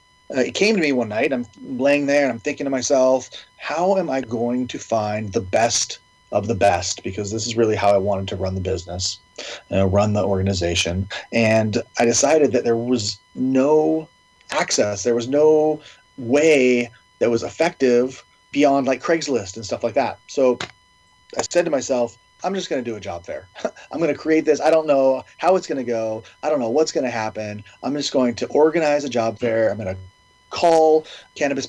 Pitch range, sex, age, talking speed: 110-140 Hz, male, 30-49, 205 wpm